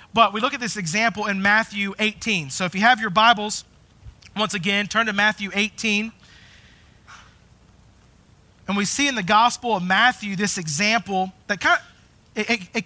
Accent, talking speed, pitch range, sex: American, 170 wpm, 190-230 Hz, male